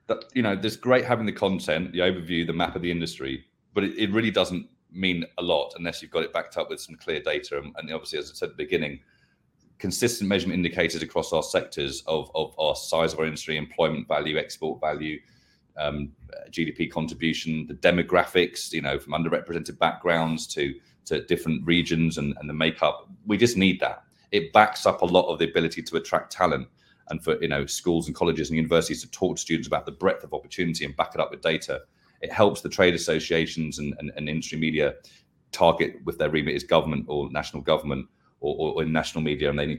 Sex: male